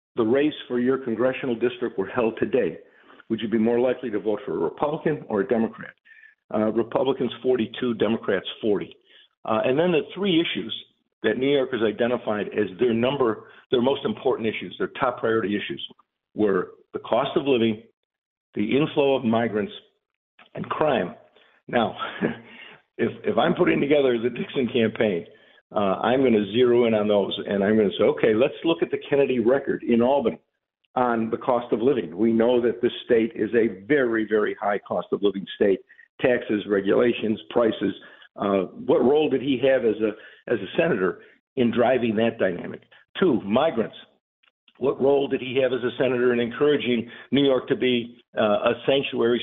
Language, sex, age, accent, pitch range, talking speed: English, male, 50-69, American, 110-135 Hz, 175 wpm